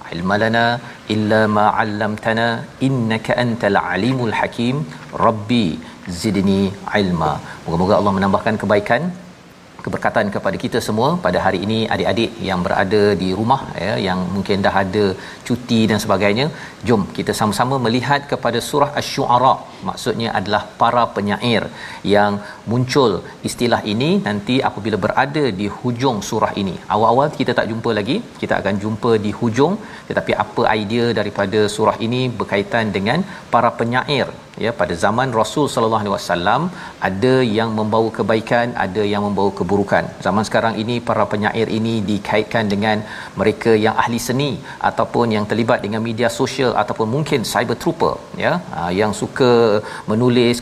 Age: 50-69